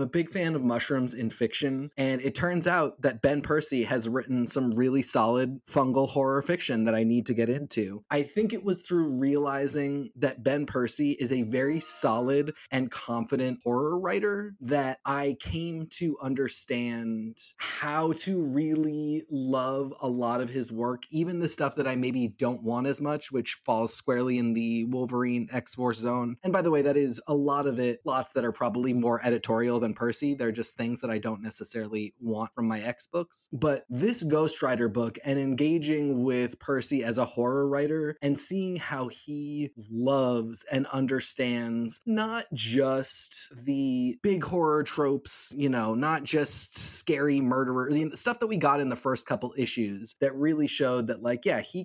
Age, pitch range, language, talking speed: 20-39, 120-150 Hz, English, 180 wpm